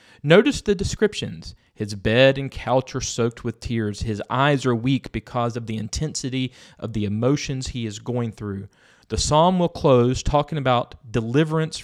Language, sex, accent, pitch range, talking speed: English, male, American, 115-160 Hz, 165 wpm